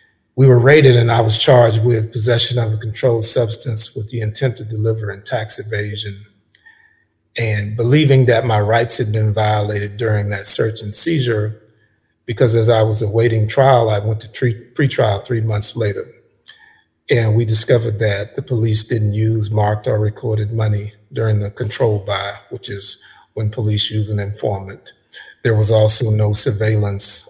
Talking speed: 165 wpm